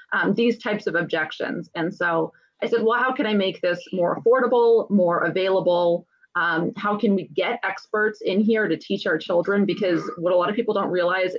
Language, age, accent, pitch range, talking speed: English, 30-49, American, 180-225 Hz, 205 wpm